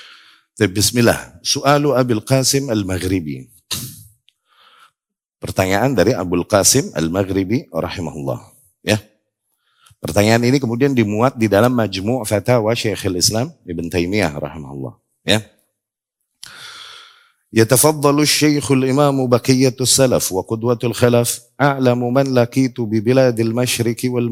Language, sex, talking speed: Indonesian, male, 100 wpm